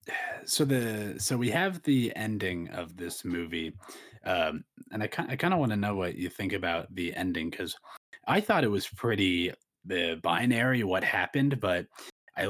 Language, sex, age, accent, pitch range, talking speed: English, male, 20-39, American, 90-130 Hz, 180 wpm